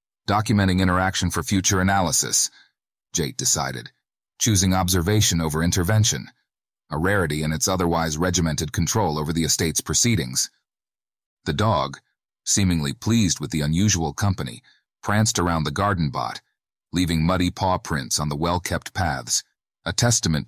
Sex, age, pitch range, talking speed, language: male, 40-59, 80-100 Hz, 130 wpm, English